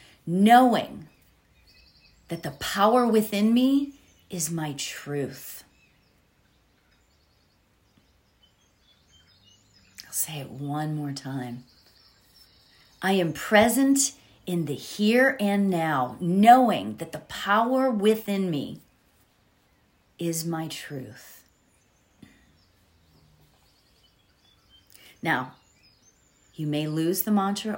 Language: English